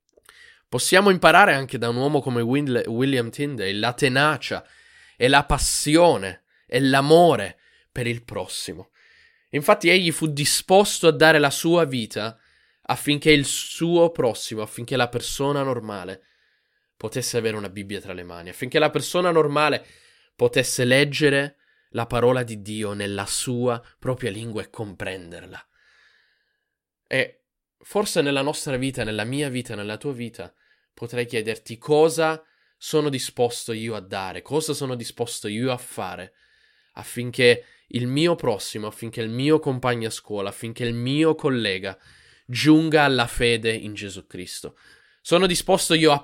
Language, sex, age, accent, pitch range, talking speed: Italian, male, 20-39, native, 115-155 Hz, 140 wpm